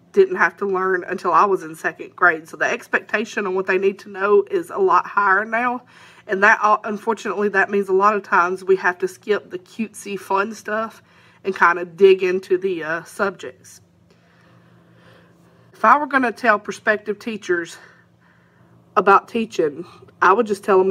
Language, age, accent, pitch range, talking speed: English, 40-59, American, 185-215 Hz, 185 wpm